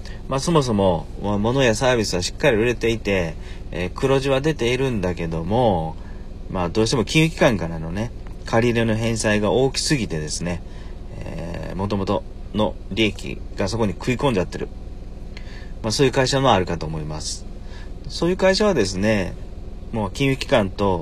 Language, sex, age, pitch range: Japanese, male, 40-59, 90-110 Hz